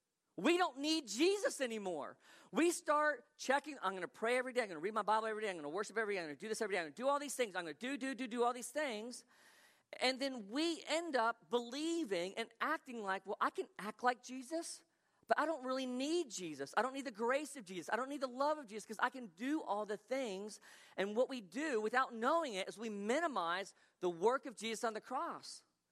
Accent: American